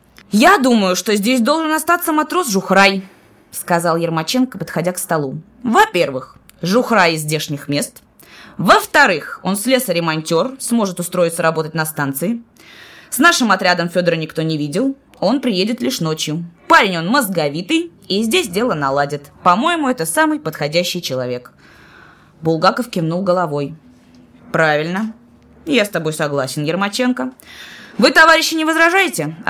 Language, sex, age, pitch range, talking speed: Russian, female, 20-39, 160-245 Hz, 130 wpm